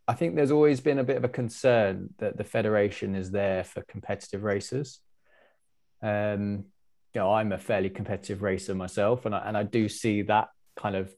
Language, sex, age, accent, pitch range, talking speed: English, male, 20-39, British, 105-120 Hz, 195 wpm